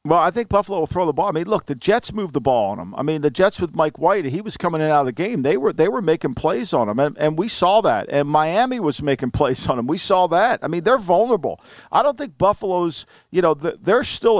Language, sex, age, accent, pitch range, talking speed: English, male, 50-69, American, 150-205 Hz, 290 wpm